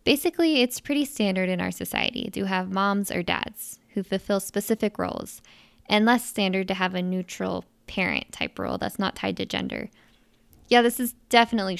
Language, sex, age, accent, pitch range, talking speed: English, female, 10-29, American, 175-220 Hz, 175 wpm